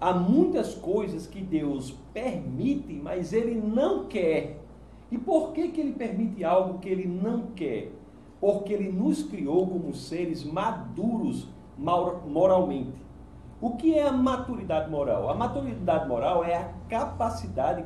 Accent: Brazilian